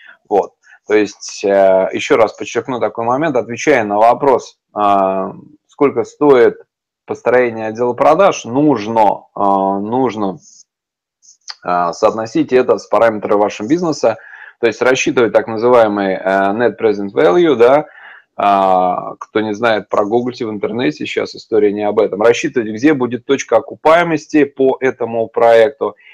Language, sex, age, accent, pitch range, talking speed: Russian, male, 20-39, native, 105-140 Hz, 120 wpm